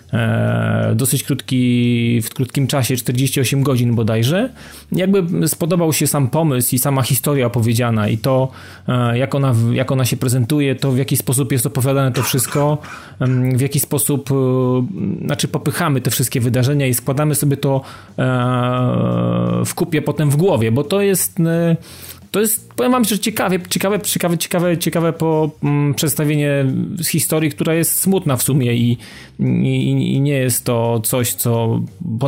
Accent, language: native, Polish